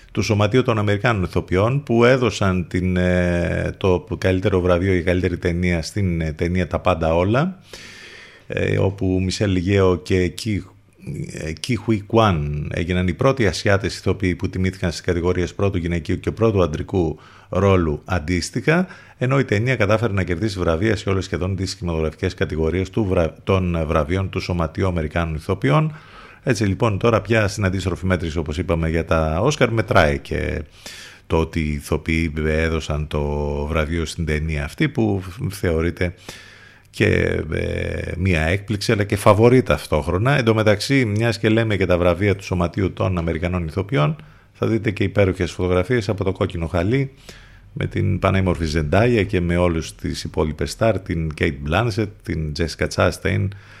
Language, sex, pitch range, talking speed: Greek, male, 85-110 Hz, 145 wpm